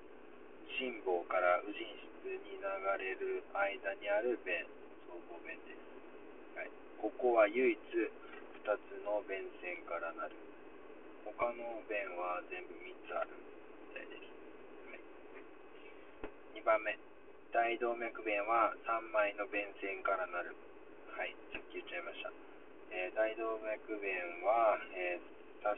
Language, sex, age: Japanese, male, 20-39